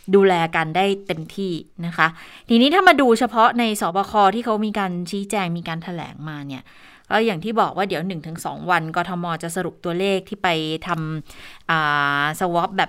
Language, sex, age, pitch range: Thai, female, 20-39, 165-210 Hz